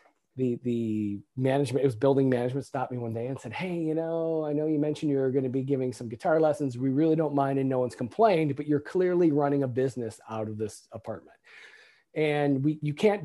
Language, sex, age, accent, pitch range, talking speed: English, male, 40-59, American, 130-170 Hz, 225 wpm